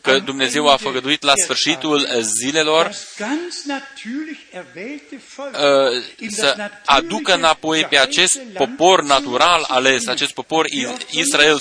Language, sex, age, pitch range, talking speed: Romanian, male, 20-39, 135-175 Hz, 95 wpm